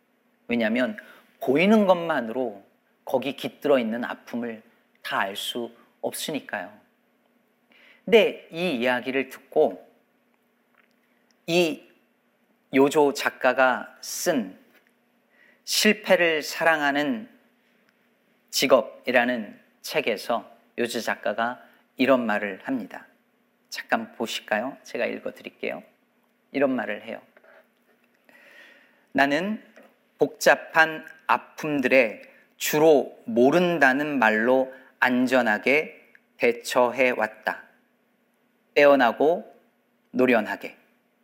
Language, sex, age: Korean, male, 40-59